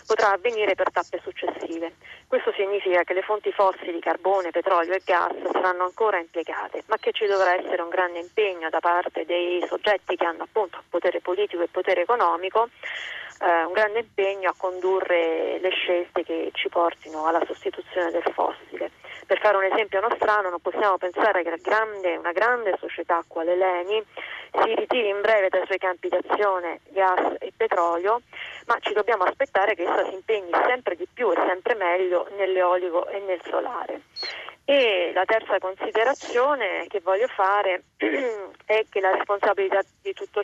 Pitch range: 175-210 Hz